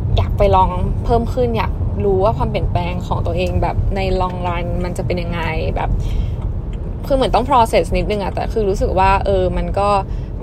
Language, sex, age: Thai, female, 10-29